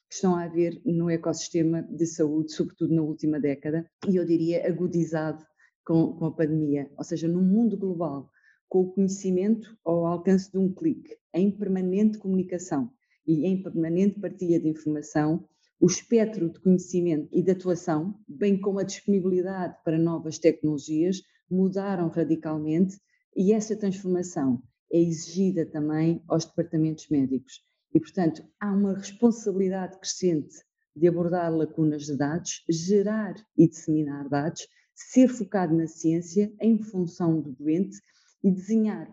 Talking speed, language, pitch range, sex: 140 wpm, Portuguese, 160-195 Hz, female